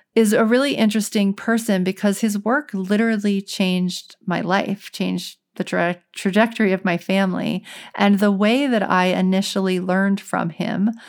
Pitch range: 180-215 Hz